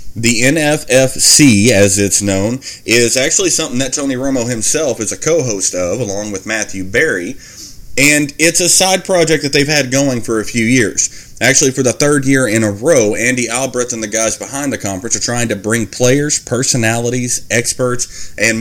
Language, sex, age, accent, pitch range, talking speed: English, male, 30-49, American, 105-130 Hz, 185 wpm